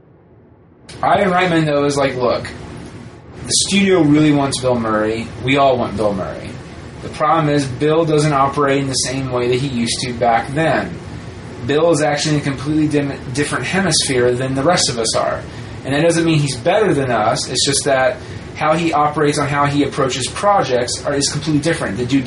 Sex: male